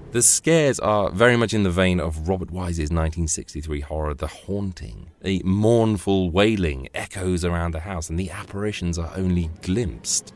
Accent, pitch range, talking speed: British, 80-100 Hz, 160 wpm